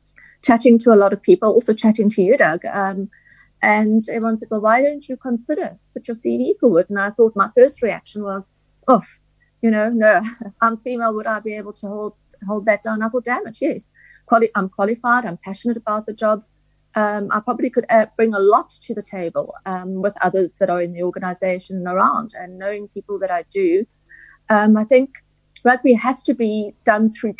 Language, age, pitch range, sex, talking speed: English, 30-49, 200-230 Hz, female, 210 wpm